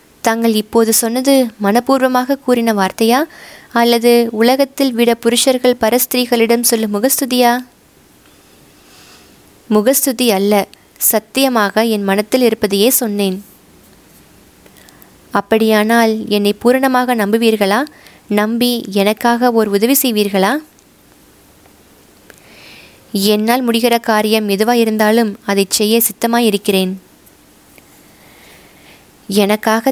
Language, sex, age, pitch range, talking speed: Tamil, female, 20-39, 205-245 Hz, 75 wpm